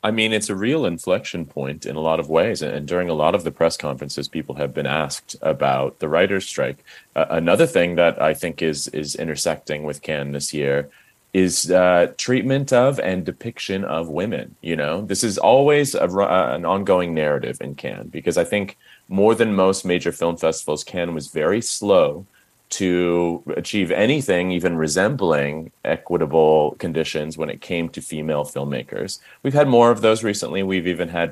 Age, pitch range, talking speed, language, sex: 30-49, 75-100 Hz, 180 wpm, English, male